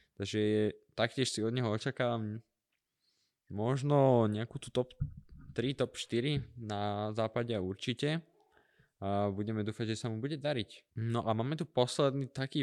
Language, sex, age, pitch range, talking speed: Slovak, male, 20-39, 110-130 Hz, 145 wpm